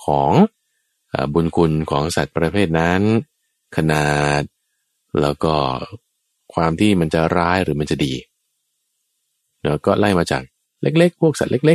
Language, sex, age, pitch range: Thai, male, 20-39, 80-120 Hz